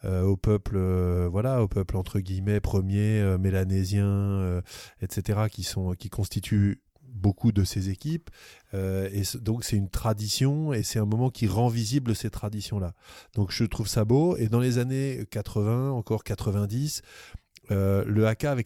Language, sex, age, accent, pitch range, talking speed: French, male, 20-39, French, 105-125 Hz, 175 wpm